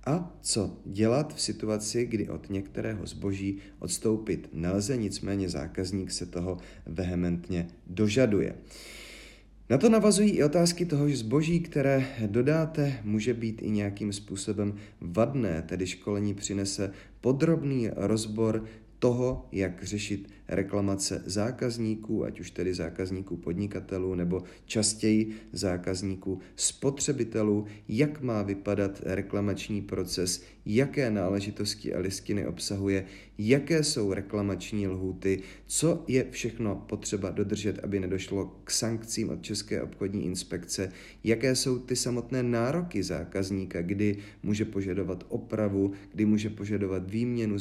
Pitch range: 95-115 Hz